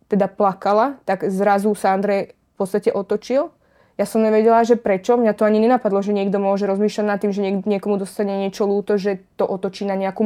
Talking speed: 200 wpm